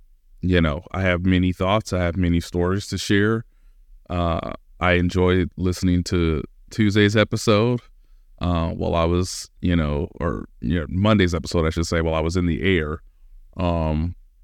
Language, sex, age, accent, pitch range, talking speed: English, male, 30-49, American, 85-95 Hz, 160 wpm